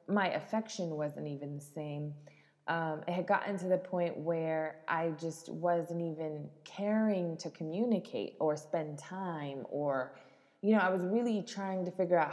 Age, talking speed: 20-39, 165 wpm